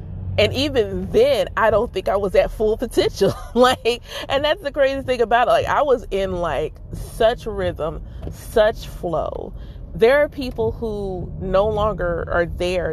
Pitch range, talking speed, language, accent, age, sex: 170-225 Hz, 165 wpm, English, American, 30-49, female